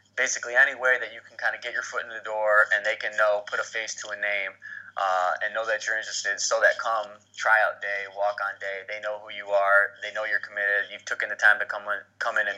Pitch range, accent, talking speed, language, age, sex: 100-120 Hz, American, 265 wpm, English, 20-39, male